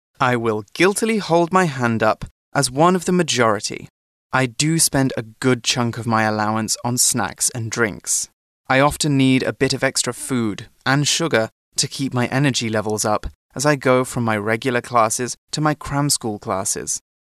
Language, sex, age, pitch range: Chinese, male, 20-39, 110-140 Hz